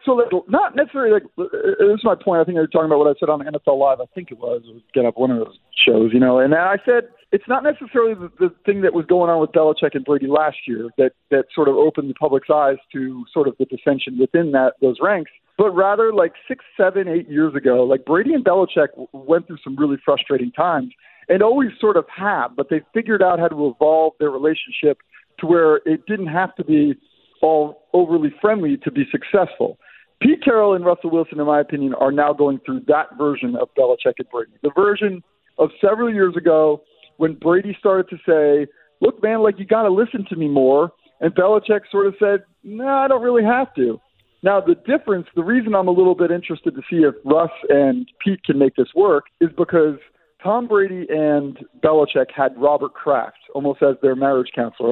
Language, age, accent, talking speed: English, 50-69, American, 215 wpm